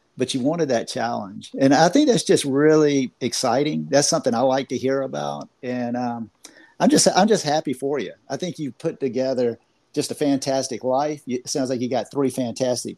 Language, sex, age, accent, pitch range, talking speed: English, male, 50-69, American, 125-160 Hz, 210 wpm